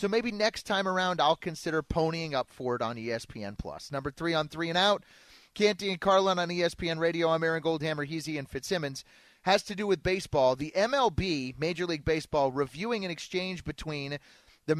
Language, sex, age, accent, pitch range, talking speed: English, male, 30-49, American, 145-190 Hz, 190 wpm